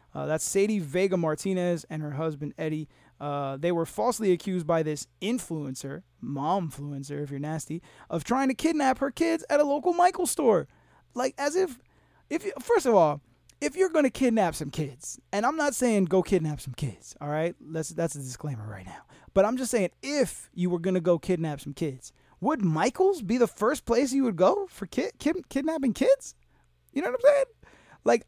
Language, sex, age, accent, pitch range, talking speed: English, male, 20-39, American, 150-250 Hz, 205 wpm